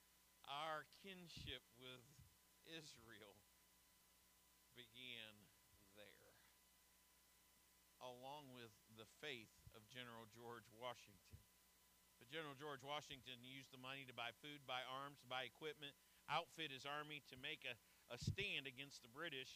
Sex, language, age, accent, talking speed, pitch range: male, English, 50-69, American, 120 wpm, 120-155 Hz